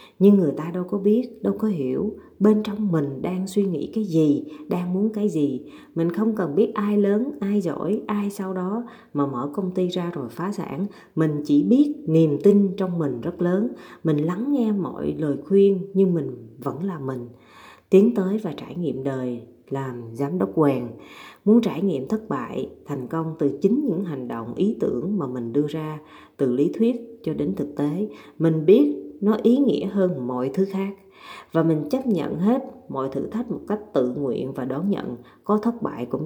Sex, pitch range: female, 145-205 Hz